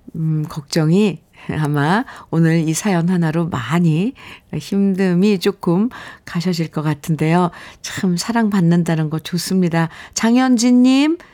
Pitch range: 160-220 Hz